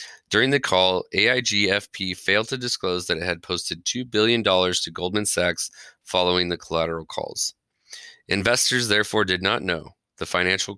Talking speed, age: 150 wpm, 30-49